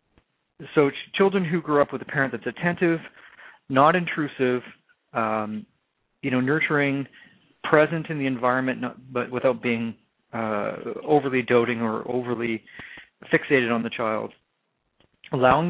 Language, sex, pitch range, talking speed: English, male, 115-145 Hz, 130 wpm